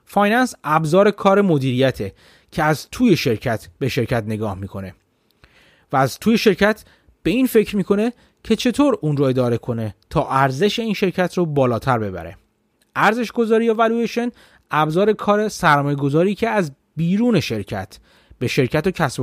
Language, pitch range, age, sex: Persian, 130-215 Hz, 30-49, male